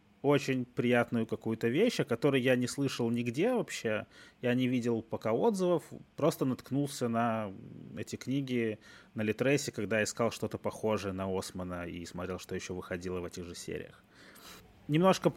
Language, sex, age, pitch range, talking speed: Russian, male, 20-39, 110-155 Hz, 150 wpm